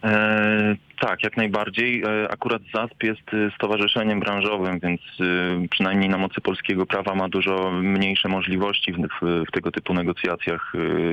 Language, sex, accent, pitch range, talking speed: Polish, male, native, 95-105 Hz, 125 wpm